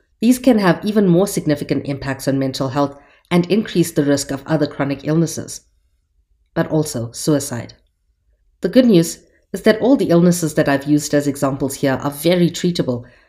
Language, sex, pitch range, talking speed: English, female, 135-170 Hz, 170 wpm